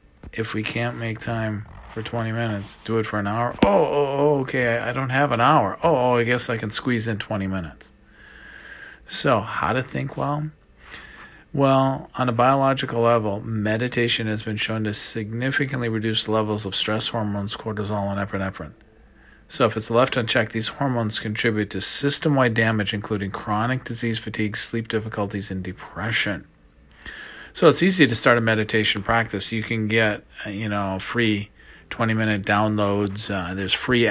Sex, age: male, 40-59